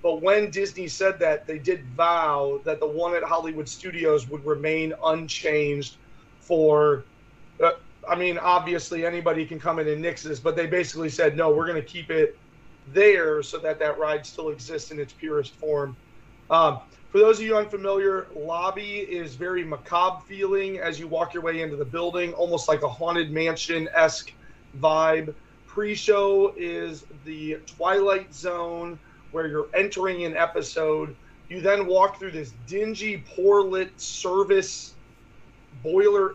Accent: American